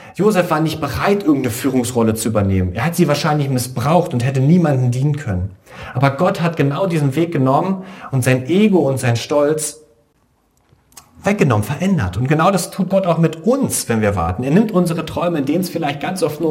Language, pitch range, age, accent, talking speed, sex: German, 125-175 Hz, 40-59, German, 200 wpm, male